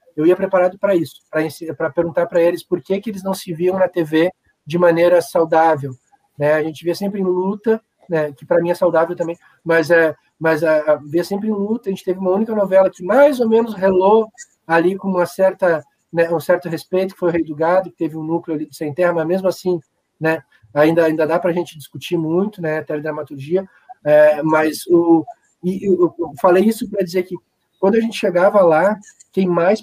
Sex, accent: male, Brazilian